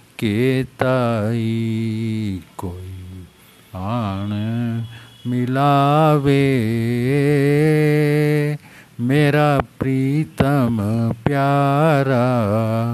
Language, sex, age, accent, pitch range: Hindi, male, 50-69, native, 115-150 Hz